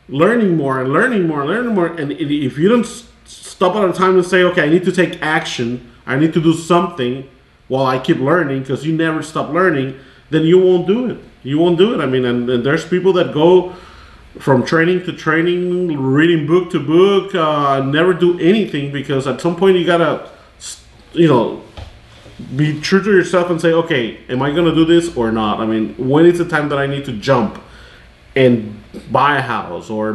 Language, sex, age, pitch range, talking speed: English, male, 30-49, 130-175 Hz, 210 wpm